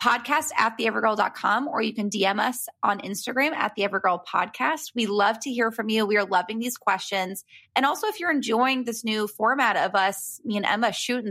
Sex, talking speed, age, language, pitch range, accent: female, 210 wpm, 20-39, English, 195-245 Hz, American